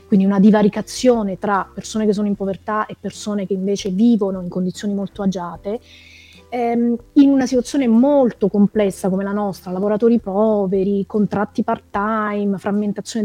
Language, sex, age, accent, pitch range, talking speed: Italian, female, 20-39, native, 190-235 Hz, 145 wpm